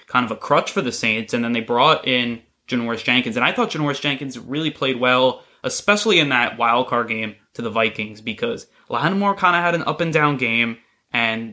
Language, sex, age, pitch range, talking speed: English, male, 20-39, 115-140 Hz, 215 wpm